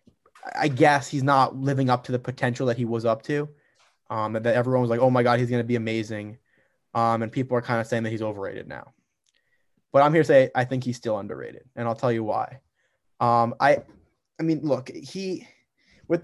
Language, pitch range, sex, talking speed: English, 125-165 Hz, male, 220 wpm